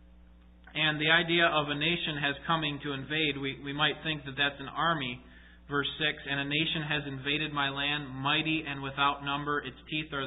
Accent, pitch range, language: American, 130-160 Hz, English